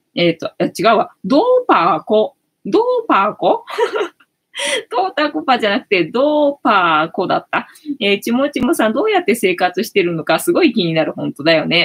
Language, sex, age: Japanese, female, 20-39